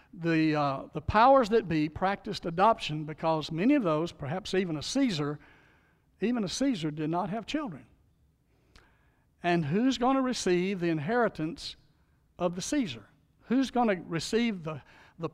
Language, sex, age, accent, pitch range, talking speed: English, male, 60-79, American, 155-205 Hz, 155 wpm